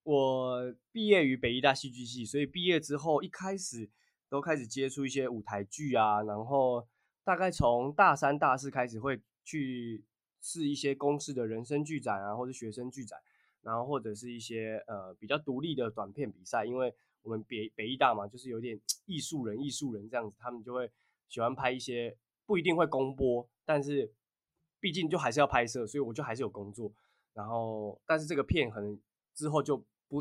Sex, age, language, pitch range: male, 20-39, Chinese, 110-140 Hz